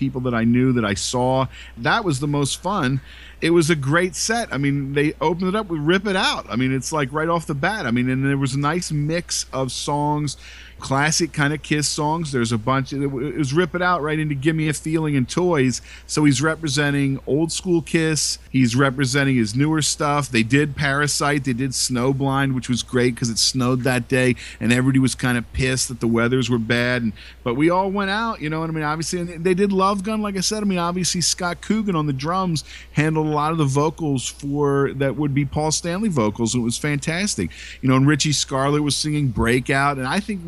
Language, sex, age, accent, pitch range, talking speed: English, male, 40-59, American, 130-155 Hz, 235 wpm